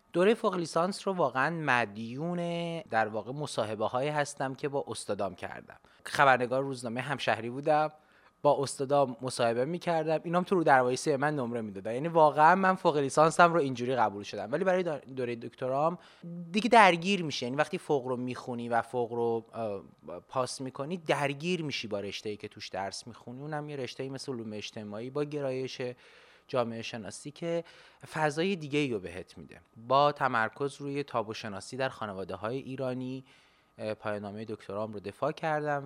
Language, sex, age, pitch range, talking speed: Persian, male, 30-49, 110-150 Hz, 160 wpm